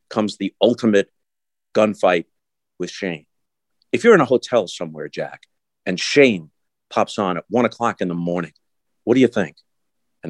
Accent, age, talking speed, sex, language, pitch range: American, 50-69, 165 wpm, male, English, 105-130 Hz